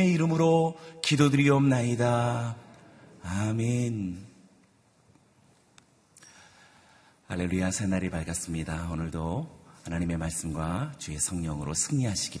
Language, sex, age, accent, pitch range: Korean, male, 40-59, native, 85-110 Hz